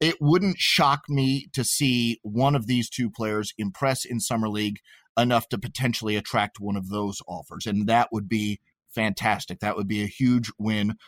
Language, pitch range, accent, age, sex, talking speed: English, 110-135 Hz, American, 30-49, male, 185 wpm